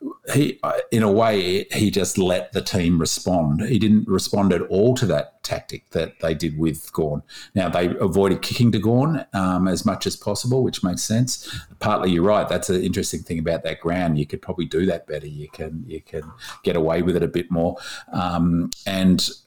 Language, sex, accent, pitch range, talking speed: English, male, Australian, 80-100 Hz, 205 wpm